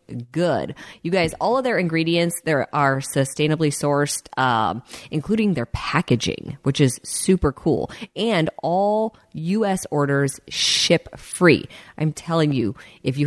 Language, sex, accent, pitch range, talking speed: English, female, American, 145-195 Hz, 130 wpm